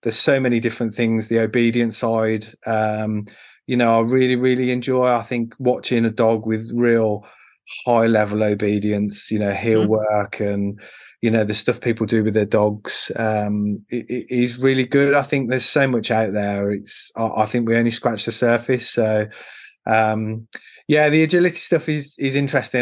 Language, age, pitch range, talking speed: English, 30-49, 110-125 Hz, 185 wpm